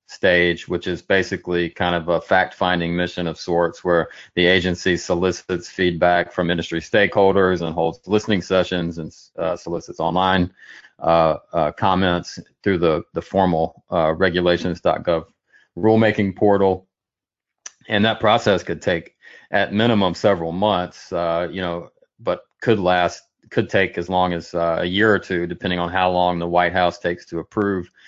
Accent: American